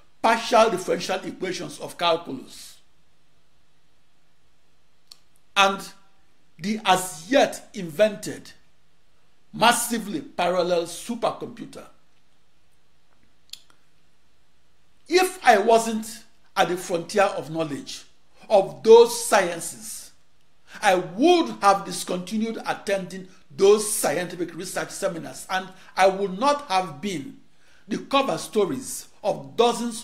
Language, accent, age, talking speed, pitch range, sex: English, Nigerian, 60-79, 85 wpm, 180-235 Hz, male